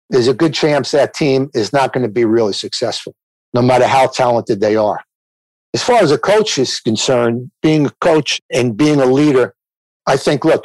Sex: male